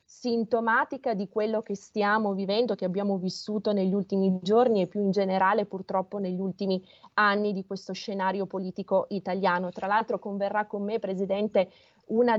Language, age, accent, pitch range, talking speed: Italian, 30-49, native, 195-225 Hz, 155 wpm